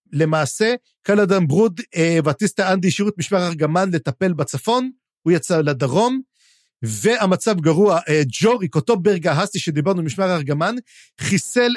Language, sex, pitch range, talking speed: Hebrew, male, 155-215 Hz, 120 wpm